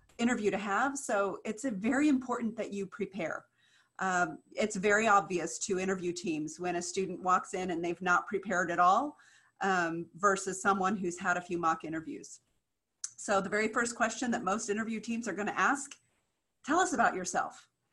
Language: English